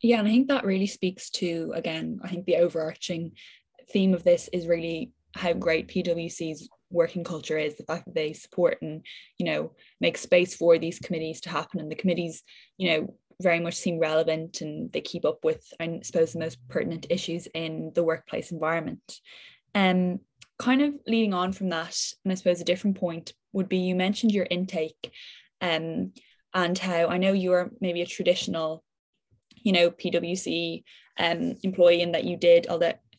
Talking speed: 190 wpm